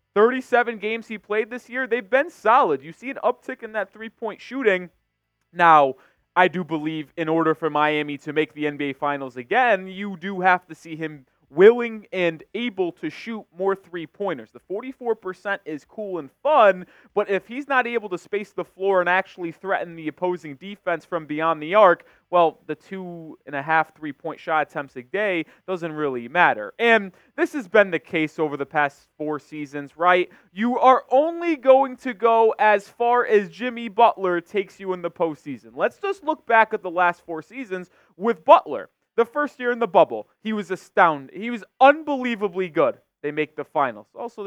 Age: 20-39